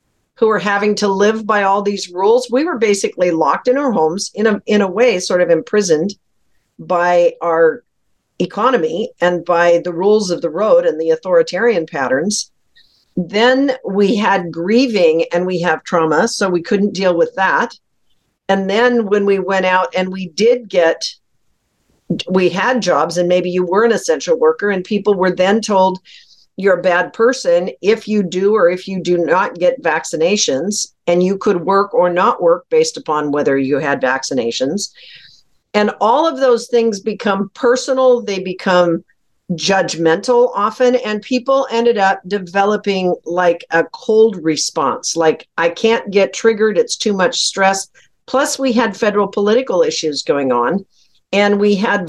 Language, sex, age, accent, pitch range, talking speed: English, female, 50-69, American, 180-235 Hz, 165 wpm